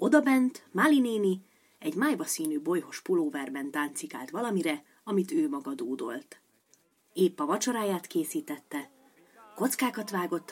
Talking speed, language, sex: 115 wpm, Hungarian, female